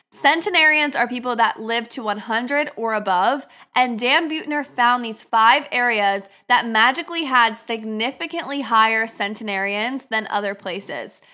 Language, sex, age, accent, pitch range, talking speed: English, female, 20-39, American, 215-270 Hz, 130 wpm